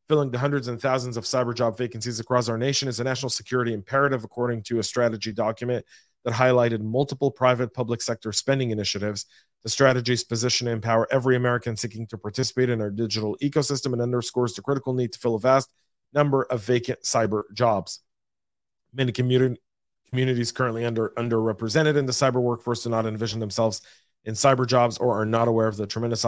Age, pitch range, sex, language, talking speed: 40-59, 115-135 Hz, male, English, 185 wpm